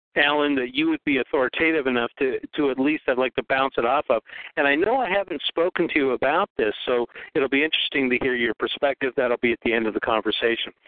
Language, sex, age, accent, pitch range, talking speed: English, male, 50-69, American, 120-145 Hz, 245 wpm